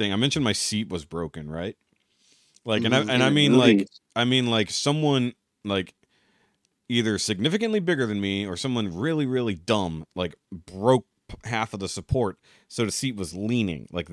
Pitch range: 95-120 Hz